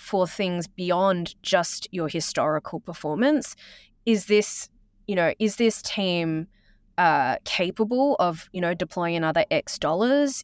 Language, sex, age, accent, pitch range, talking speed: English, female, 20-39, Australian, 160-220 Hz, 130 wpm